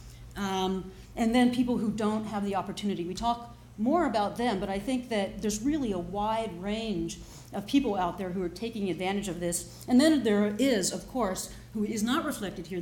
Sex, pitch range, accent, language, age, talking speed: female, 185-225 Hz, American, English, 40-59, 205 wpm